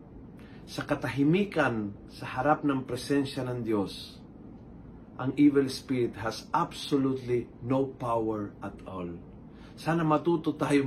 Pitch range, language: 115-150 Hz, Filipino